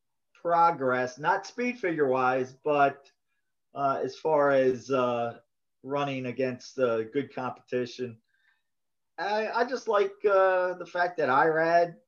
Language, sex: English, male